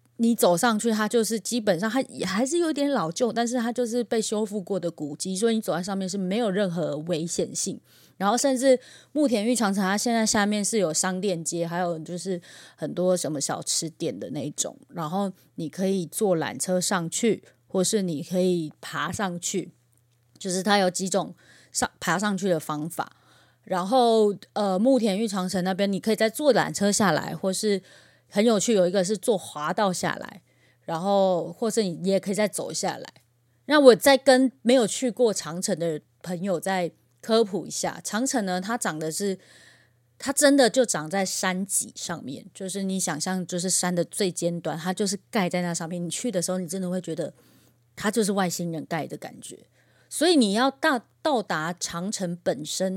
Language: Chinese